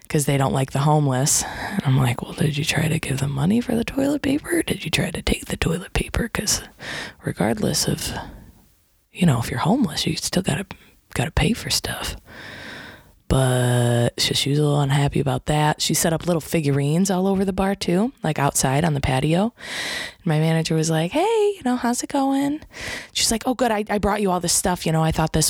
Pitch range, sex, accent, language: 145-200 Hz, female, American, English